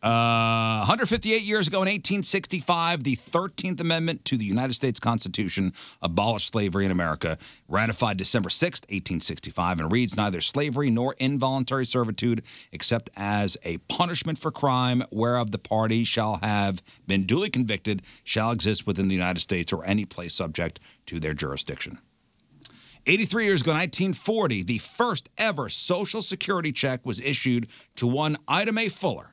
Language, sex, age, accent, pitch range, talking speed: English, male, 50-69, American, 100-150 Hz, 150 wpm